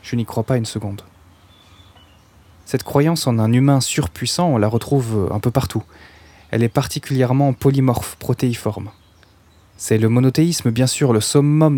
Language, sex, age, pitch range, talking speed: French, male, 20-39, 100-135 Hz, 155 wpm